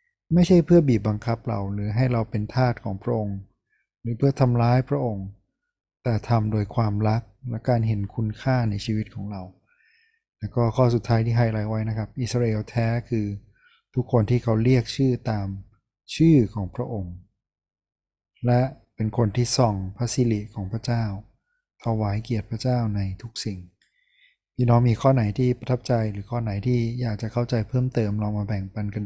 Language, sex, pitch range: Thai, male, 105-125 Hz